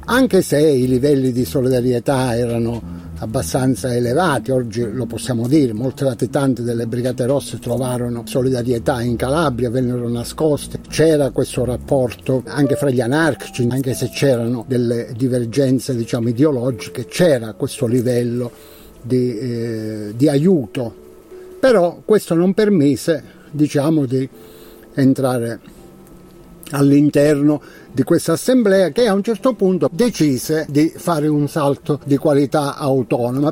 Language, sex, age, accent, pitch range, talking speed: Italian, male, 60-79, native, 125-155 Hz, 125 wpm